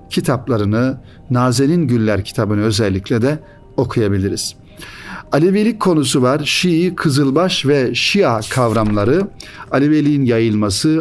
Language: Turkish